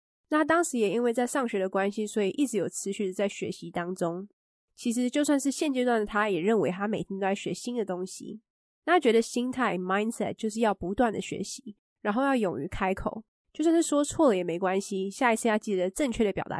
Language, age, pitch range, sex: English, 20-39, 195-245 Hz, female